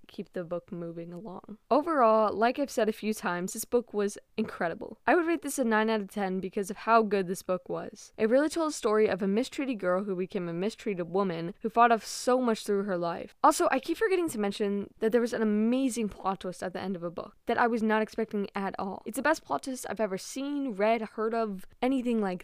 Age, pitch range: 10-29, 195-255 Hz